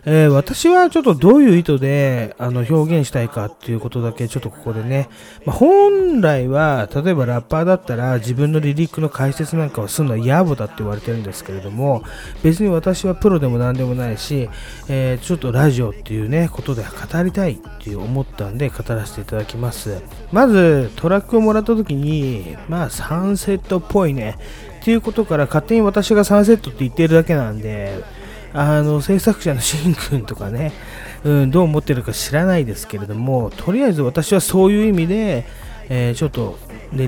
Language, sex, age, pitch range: Japanese, male, 30-49, 120-180 Hz